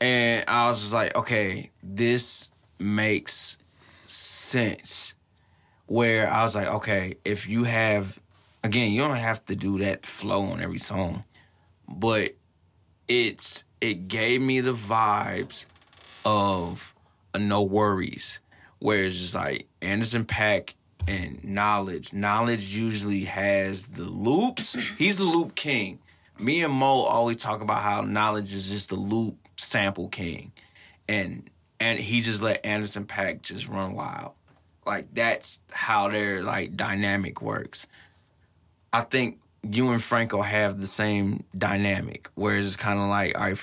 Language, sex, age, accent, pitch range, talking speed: English, male, 20-39, American, 95-115 Hz, 140 wpm